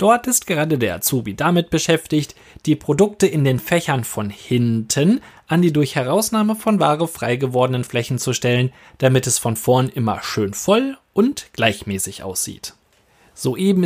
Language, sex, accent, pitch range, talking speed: German, male, German, 130-185 Hz, 150 wpm